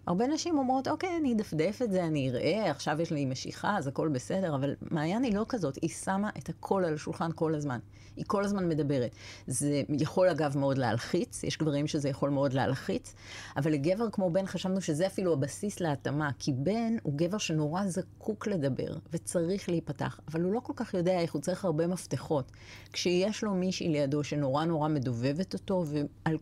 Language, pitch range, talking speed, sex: Hebrew, 140-185 Hz, 190 wpm, female